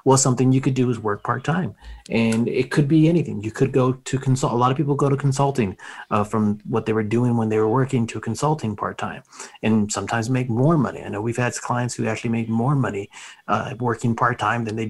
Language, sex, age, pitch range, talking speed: English, male, 30-49, 120-145 Hz, 235 wpm